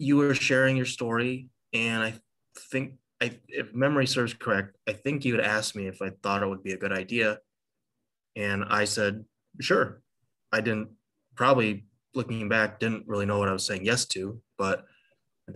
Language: English